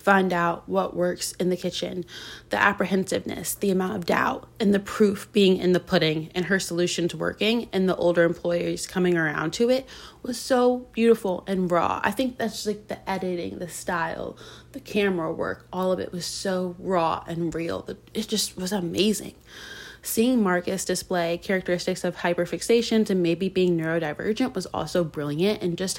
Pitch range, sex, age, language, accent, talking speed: 175-215 Hz, female, 20-39, English, American, 175 wpm